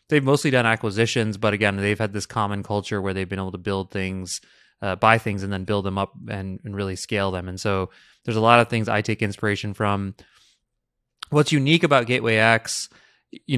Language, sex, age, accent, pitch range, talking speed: English, male, 20-39, American, 95-115 Hz, 210 wpm